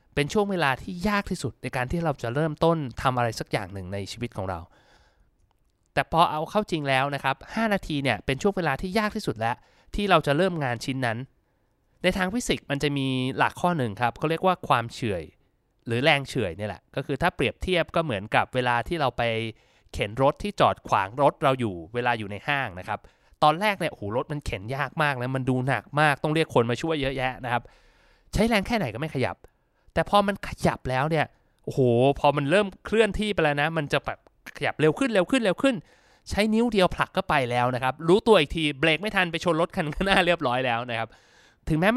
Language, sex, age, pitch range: Thai, male, 20-39, 120-175 Hz